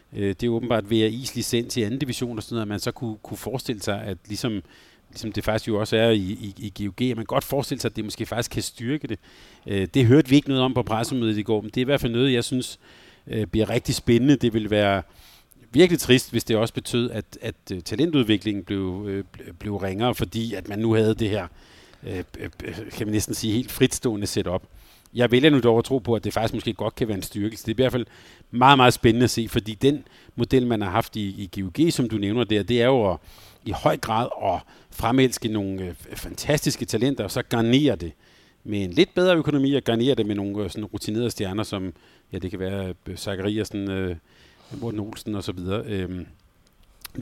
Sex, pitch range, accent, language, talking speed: male, 100-120 Hz, native, Danish, 230 wpm